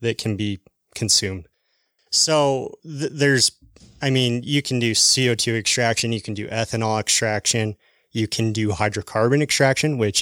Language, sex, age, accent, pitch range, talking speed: English, male, 20-39, American, 110-130 Hz, 145 wpm